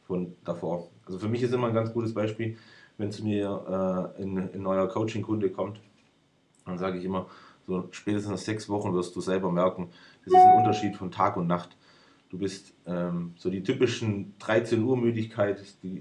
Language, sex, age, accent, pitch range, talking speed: German, male, 30-49, German, 90-105 Hz, 185 wpm